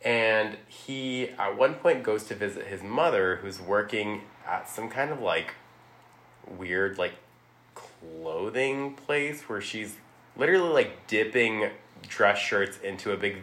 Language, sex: English, male